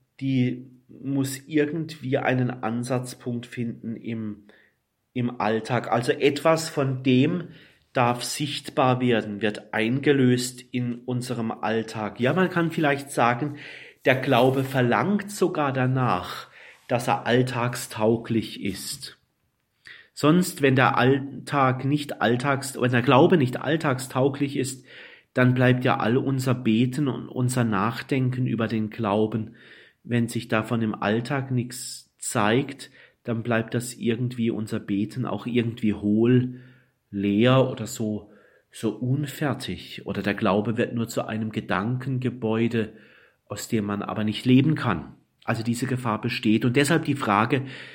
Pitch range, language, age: 115-135 Hz, German, 30-49